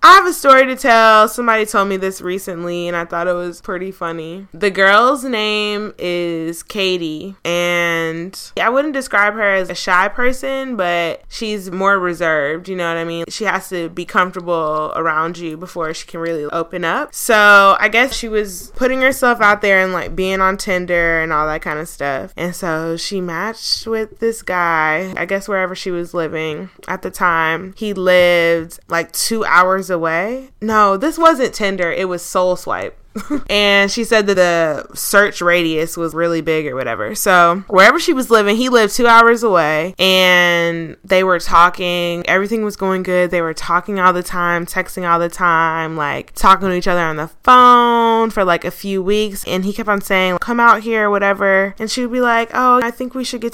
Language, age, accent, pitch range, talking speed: English, 10-29, American, 175-215 Hz, 200 wpm